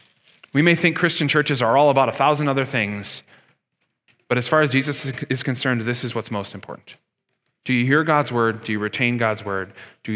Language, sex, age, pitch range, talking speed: English, male, 30-49, 125-175 Hz, 205 wpm